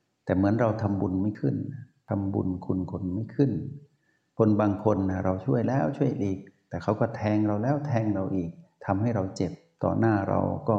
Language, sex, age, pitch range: Thai, male, 60-79, 95-110 Hz